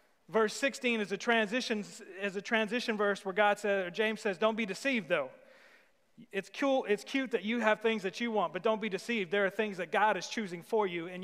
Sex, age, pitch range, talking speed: male, 30-49, 195-225 Hz, 220 wpm